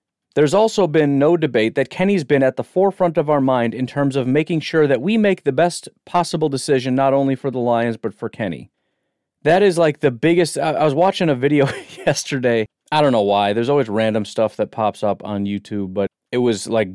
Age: 30-49